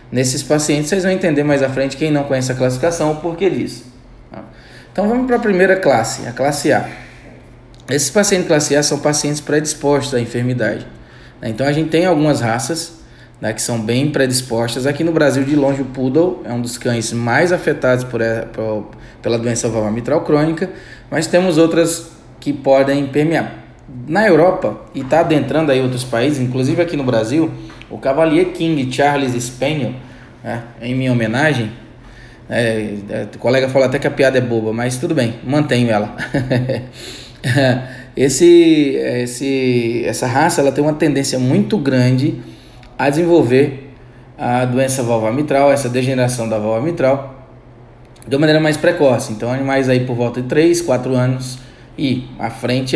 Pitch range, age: 120-150 Hz, 20-39